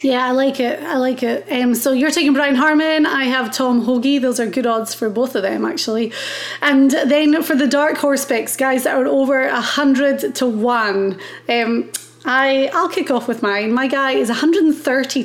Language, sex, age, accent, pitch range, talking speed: English, female, 30-49, British, 235-280 Hz, 195 wpm